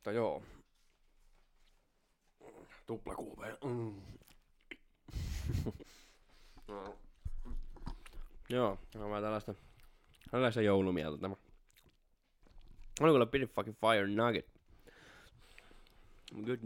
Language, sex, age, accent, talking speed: Finnish, male, 20-39, native, 70 wpm